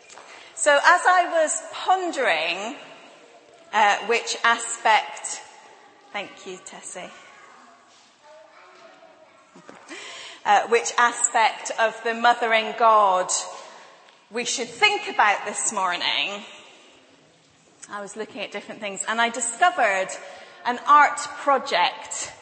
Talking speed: 95 wpm